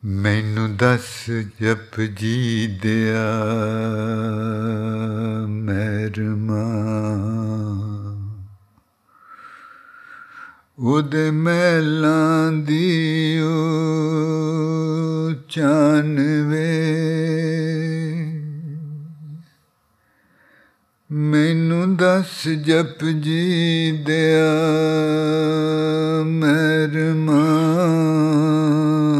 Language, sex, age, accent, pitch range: English, male, 60-79, Indian, 140-160 Hz